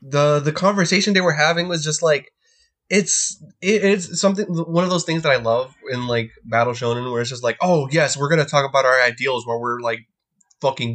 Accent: American